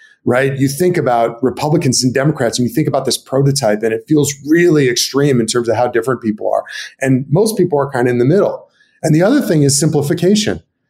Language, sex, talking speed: English, male, 220 wpm